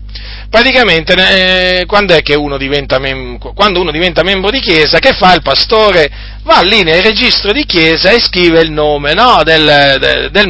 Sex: male